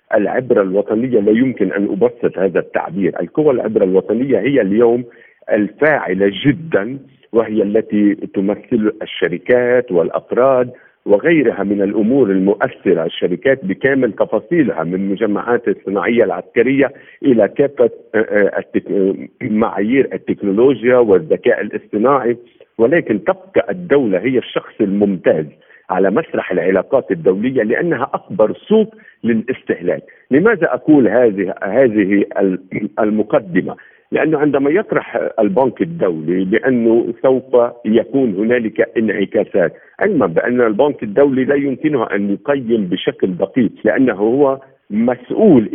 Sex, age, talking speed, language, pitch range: male, 50-69, 105 wpm, Arabic, 105-140 Hz